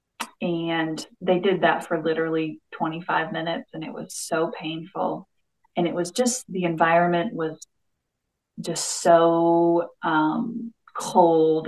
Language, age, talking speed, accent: English, 30-49, 125 wpm, American